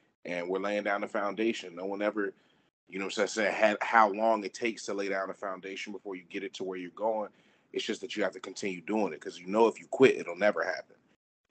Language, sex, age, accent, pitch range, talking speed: English, male, 30-49, American, 95-125 Hz, 260 wpm